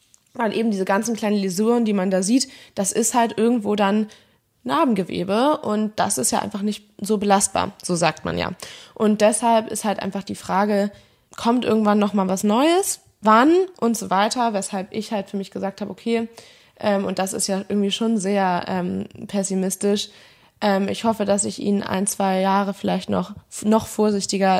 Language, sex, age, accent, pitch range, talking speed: German, female, 20-39, German, 195-220 Hz, 185 wpm